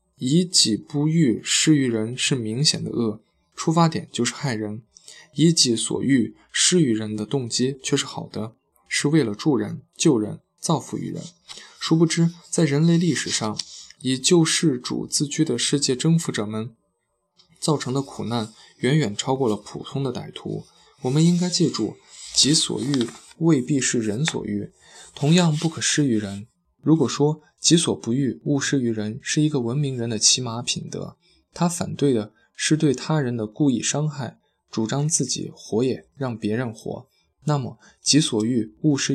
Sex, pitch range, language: male, 115-155 Hz, Chinese